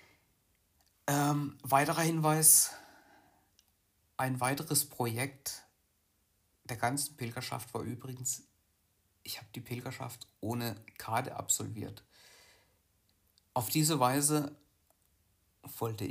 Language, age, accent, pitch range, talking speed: German, 60-79, German, 100-140 Hz, 80 wpm